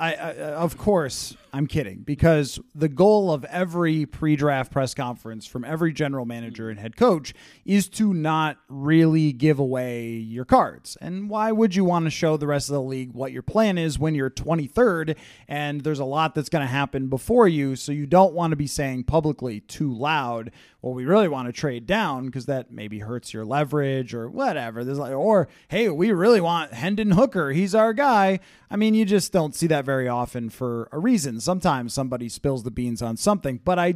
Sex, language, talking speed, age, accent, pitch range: male, English, 205 wpm, 30-49, American, 135-185 Hz